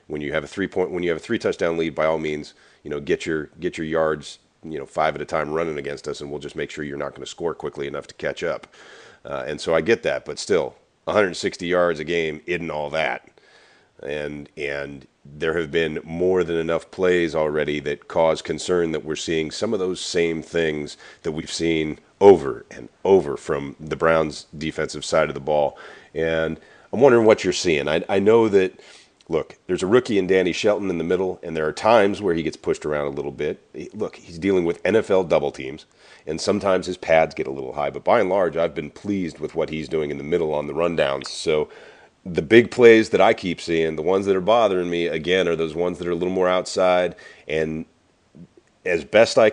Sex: male